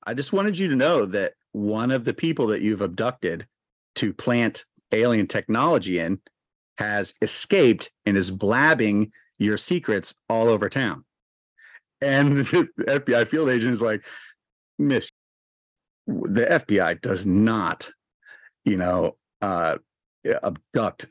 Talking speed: 130 wpm